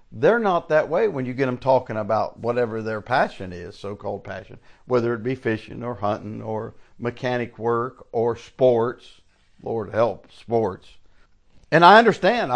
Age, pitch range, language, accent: 60-79, 115-155 Hz, English, American